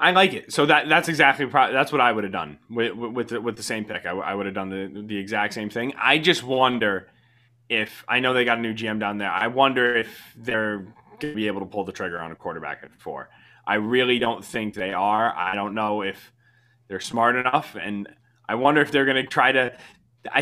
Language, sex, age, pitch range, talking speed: English, male, 20-39, 115-140 Hz, 255 wpm